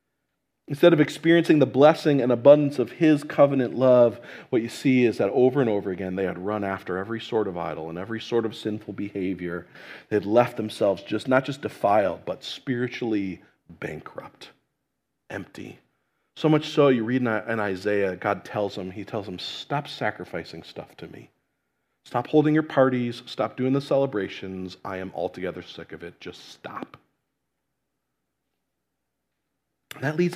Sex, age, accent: male, 40-59, American